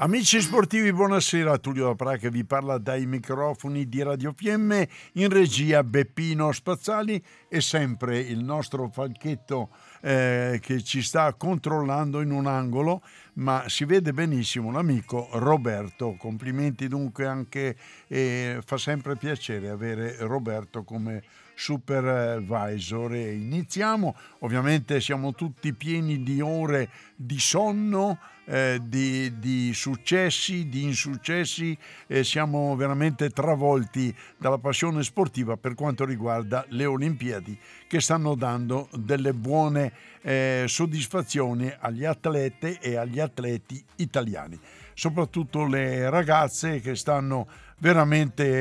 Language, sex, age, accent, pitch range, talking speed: Italian, male, 60-79, native, 120-150 Hz, 115 wpm